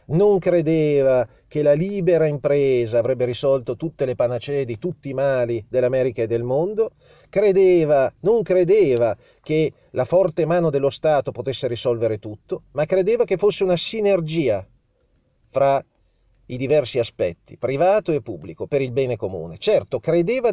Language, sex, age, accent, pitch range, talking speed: Italian, male, 40-59, native, 115-160 Hz, 145 wpm